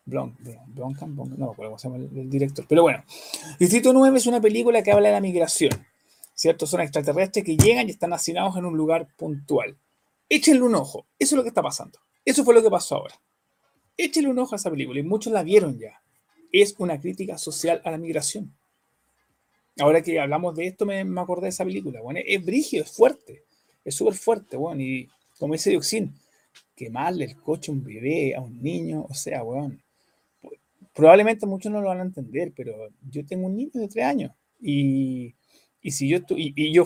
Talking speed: 215 wpm